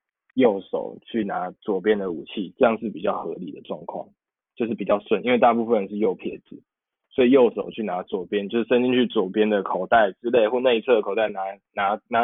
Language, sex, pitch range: Chinese, male, 105-125 Hz